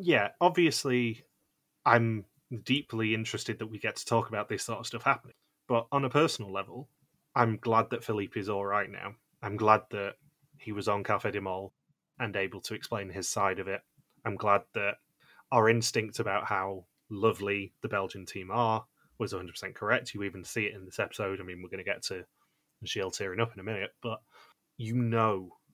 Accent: British